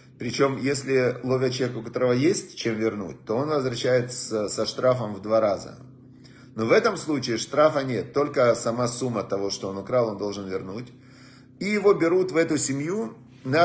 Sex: male